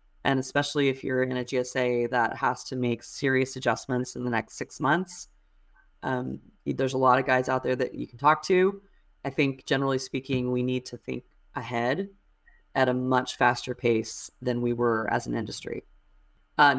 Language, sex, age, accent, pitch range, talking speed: English, female, 20-39, American, 120-135 Hz, 185 wpm